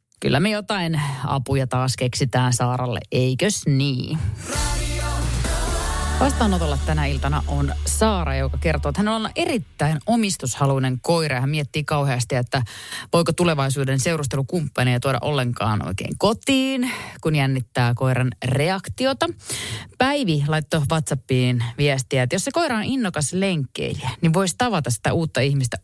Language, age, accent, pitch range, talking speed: Finnish, 30-49, native, 115-165 Hz, 130 wpm